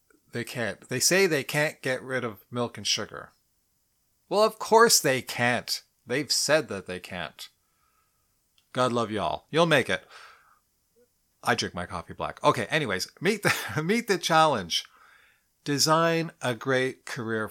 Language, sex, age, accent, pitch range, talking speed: English, male, 40-59, American, 110-155 Hz, 145 wpm